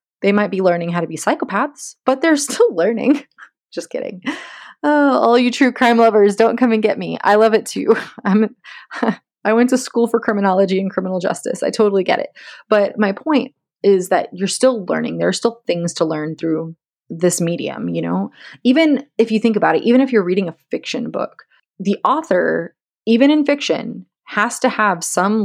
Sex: female